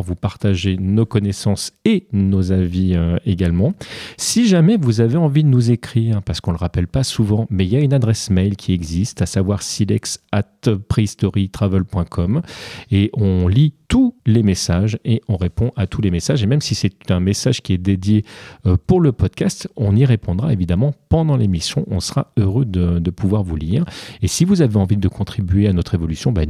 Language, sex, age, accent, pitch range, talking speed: French, male, 40-59, French, 95-120 Hz, 195 wpm